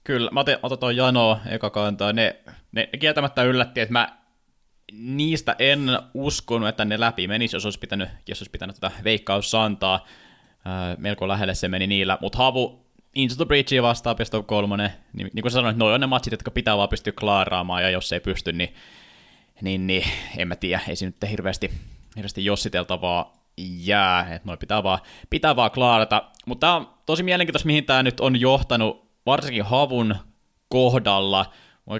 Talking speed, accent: 170 wpm, native